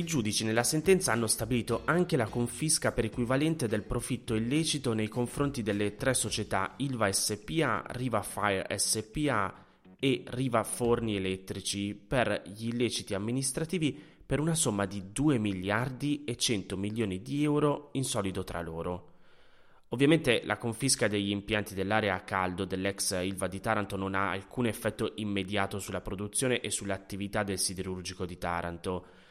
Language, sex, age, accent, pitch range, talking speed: Italian, male, 20-39, native, 100-125 Hz, 145 wpm